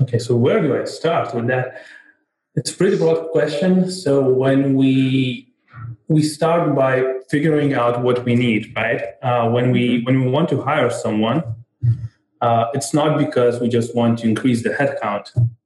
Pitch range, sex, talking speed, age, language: 120-145 Hz, male, 175 wpm, 20-39, English